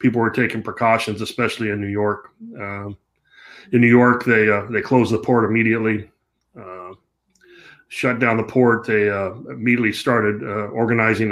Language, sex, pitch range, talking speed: English, male, 105-115 Hz, 160 wpm